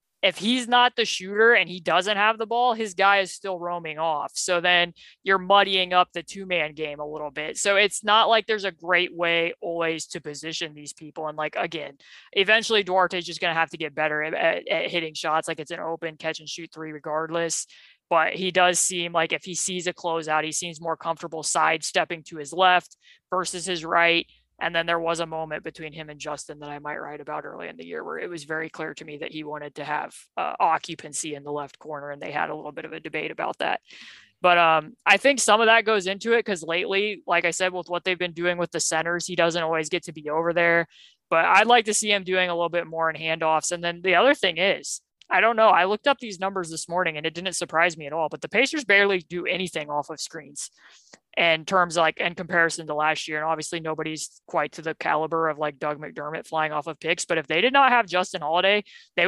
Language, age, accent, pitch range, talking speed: English, 20-39, American, 160-190 Hz, 245 wpm